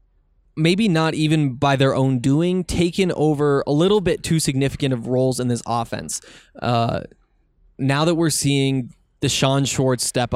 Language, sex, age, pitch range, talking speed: English, male, 20-39, 125-150 Hz, 155 wpm